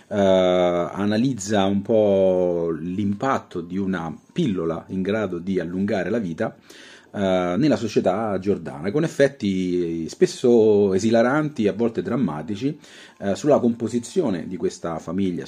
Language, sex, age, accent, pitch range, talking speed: Italian, male, 30-49, native, 90-105 Hz, 120 wpm